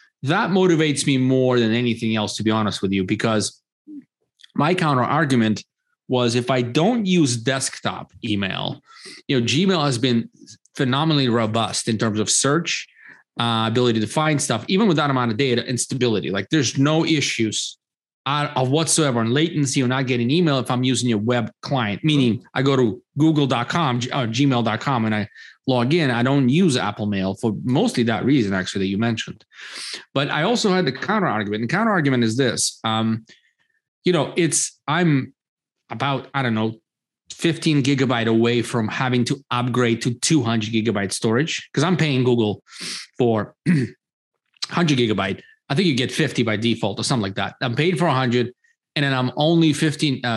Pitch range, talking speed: 115-150 Hz, 180 wpm